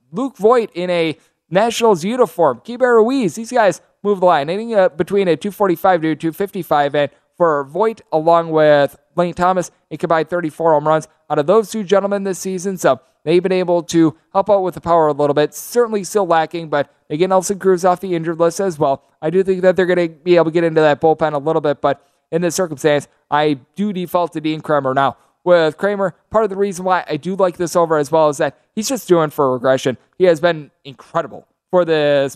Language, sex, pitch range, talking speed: English, male, 150-190 Hz, 225 wpm